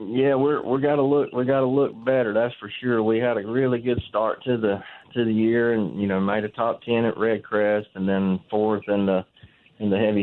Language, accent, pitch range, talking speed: English, American, 95-110 Hz, 250 wpm